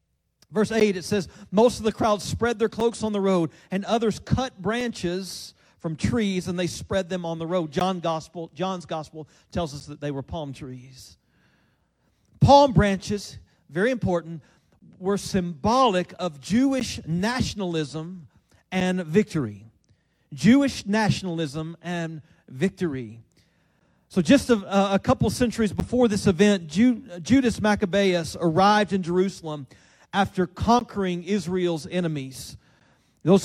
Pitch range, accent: 165-220 Hz, American